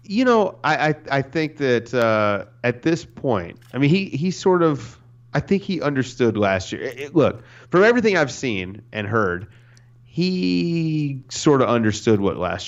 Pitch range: 100-130 Hz